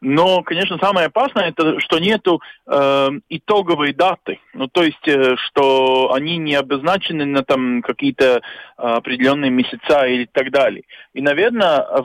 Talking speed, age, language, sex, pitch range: 135 wpm, 40-59, Russian, male, 135-185 Hz